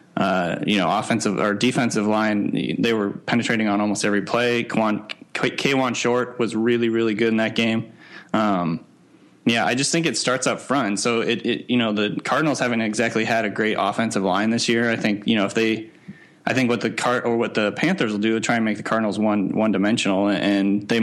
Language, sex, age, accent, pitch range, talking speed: English, male, 20-39, American, 105-120 Hz, 215 wpm